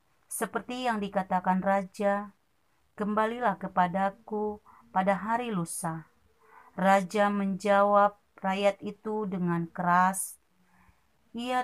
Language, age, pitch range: Indonesian, 30-49, 190-220 Hz